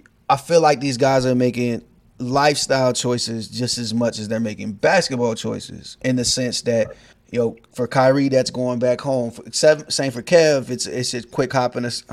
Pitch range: 115-135 Hz